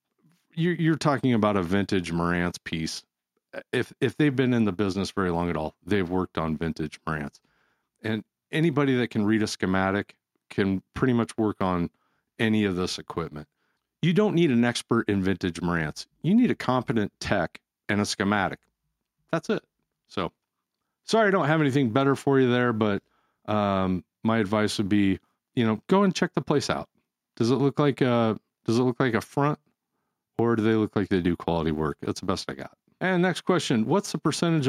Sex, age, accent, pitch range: male, 40-59, American, 95-135 Hz